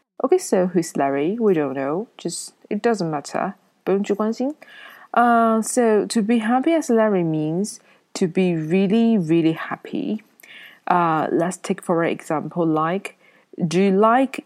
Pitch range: 175-235 Hz